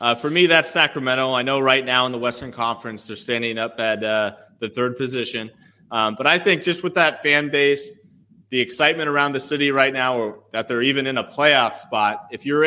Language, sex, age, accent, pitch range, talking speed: English, male, 30-49, American, 120-145 Hz, 225 wpm